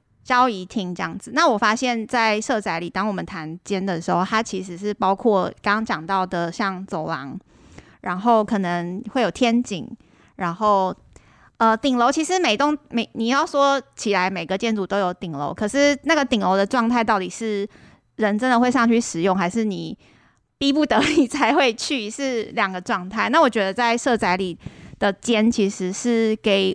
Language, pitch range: Chinese, 185-235 Hz